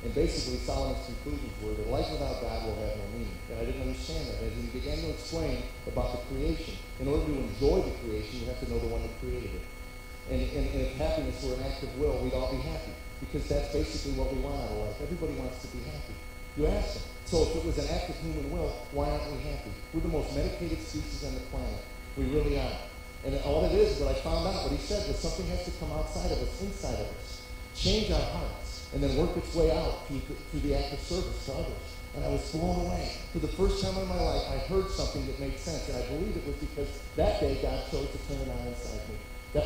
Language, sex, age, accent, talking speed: English, male, 40-59, American, 255 wpm